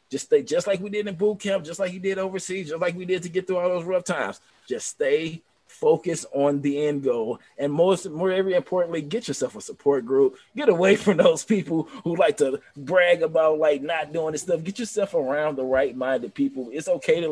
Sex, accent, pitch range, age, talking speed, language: male, American, 160-225 Hz, 20-39, 230 wpm, English